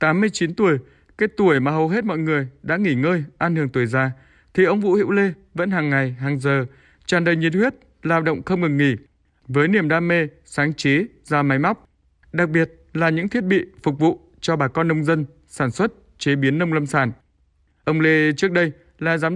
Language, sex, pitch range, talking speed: Vietnamese, male, 140-185 Hz, 215 wpm